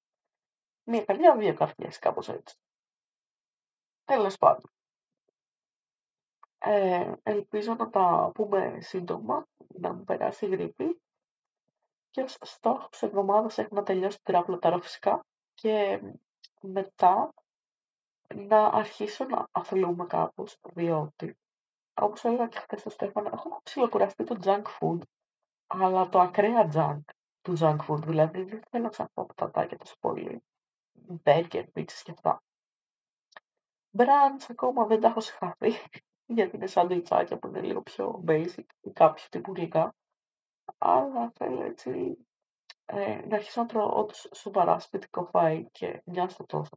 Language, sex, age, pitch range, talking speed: Greek, female, 30-49, 175-220 Hz, 130 wpm